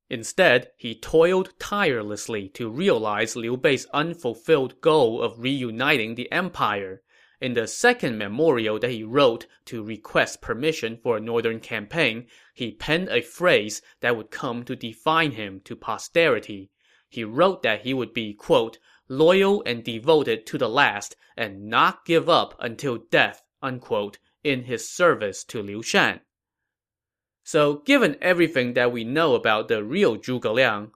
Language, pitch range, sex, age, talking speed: English, 110-160 Hz, male, 20-39, 150 wpm